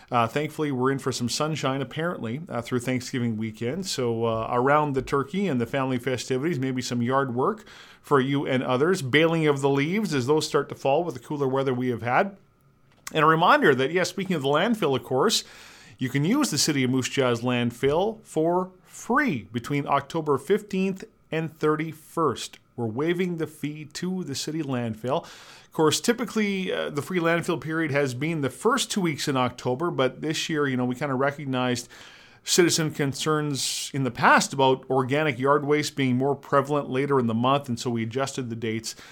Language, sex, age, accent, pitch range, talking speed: English, male, 40-59, American, 125-160 Hz, 195 wpm